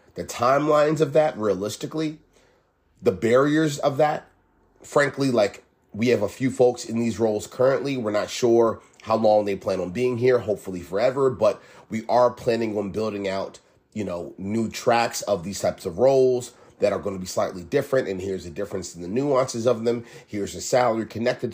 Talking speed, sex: 190 wpm, male